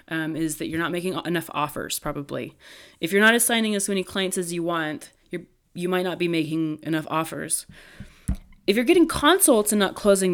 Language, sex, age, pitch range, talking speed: English, female, 20-39, 155-190 Hz, 195 wpm